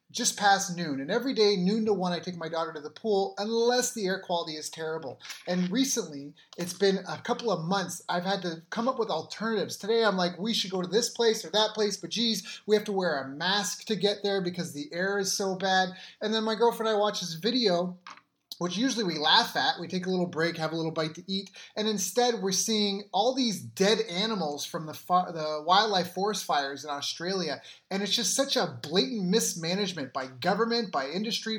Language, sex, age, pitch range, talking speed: English, male, 30-49, 175-220 Hz, 225 wpm